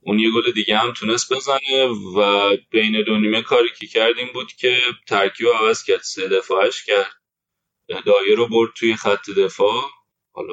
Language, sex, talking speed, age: Persian, male, 170 wpm, 20-39